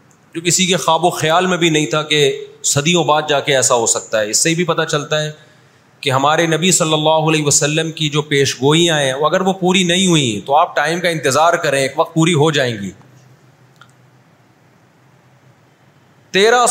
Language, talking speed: Urdu, 200 wpm